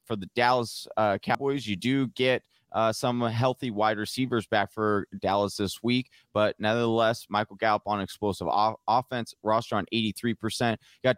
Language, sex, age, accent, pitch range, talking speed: English, male, 20-39, American, 105-125 Hz, 160 wpm